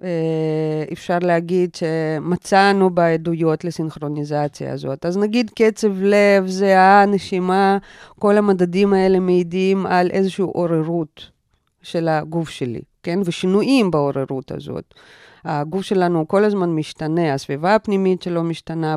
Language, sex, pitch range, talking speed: Hebrew, female, 165-205 Hz, 110 wpm